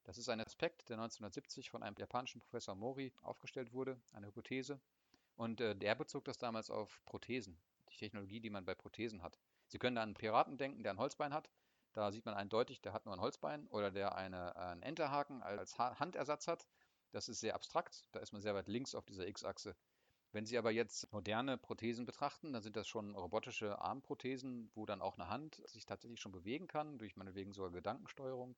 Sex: male